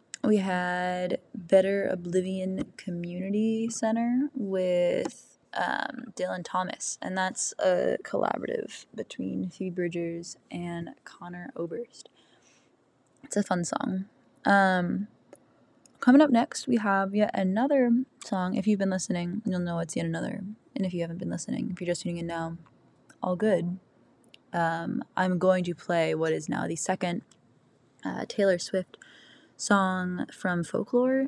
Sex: female